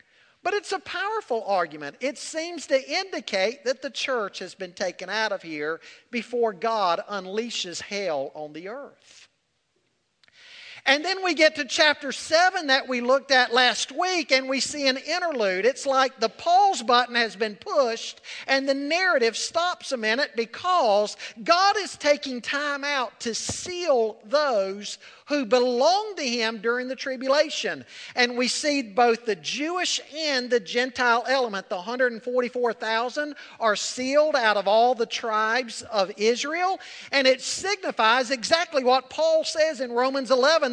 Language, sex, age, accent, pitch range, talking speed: English, male, 50-69, American, 230-305 Hz, 155 wpm